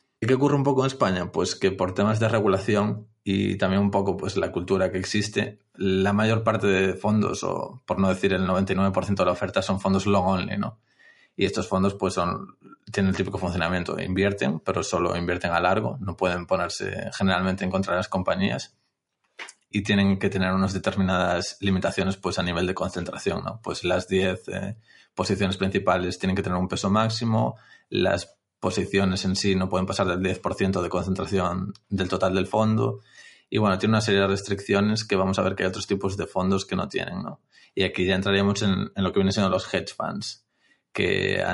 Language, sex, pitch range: Spanish, male, 95-100 Hz